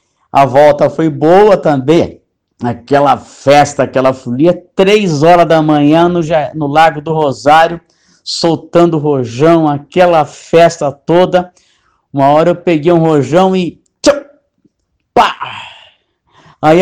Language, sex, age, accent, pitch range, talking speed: Portuguese, male, 60-79, Brazilian, 155-190 Hz, 115 wpm